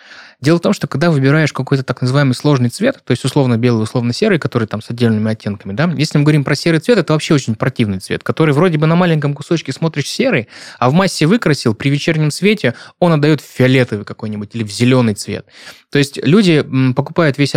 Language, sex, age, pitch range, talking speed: Russian, male, 20-39, 120-155 Hz, 215 wpm